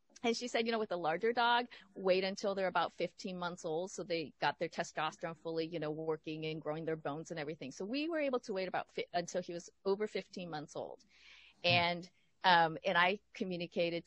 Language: English